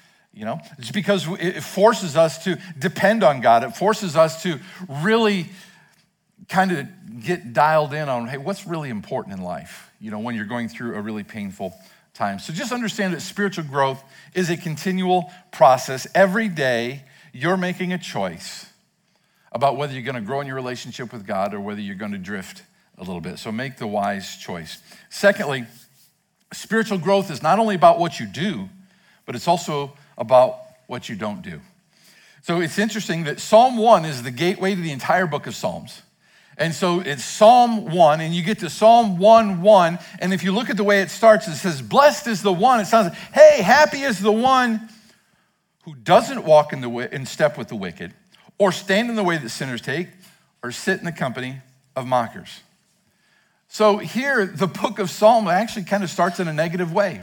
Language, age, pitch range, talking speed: English, 50-69, 150-205 Hz, 195 wpm